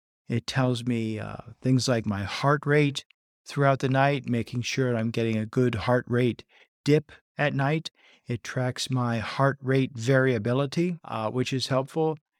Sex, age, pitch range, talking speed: male, 50-69, 120-145 Hz, 165 wpm